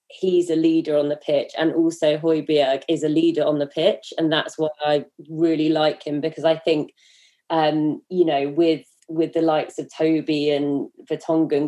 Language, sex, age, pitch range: English, female, 20-39, 145-170 Hz